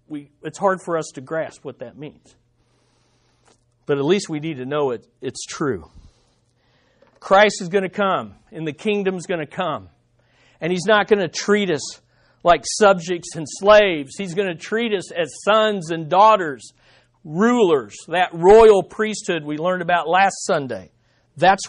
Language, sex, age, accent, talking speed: English, male, 50-69, American, 165 wpm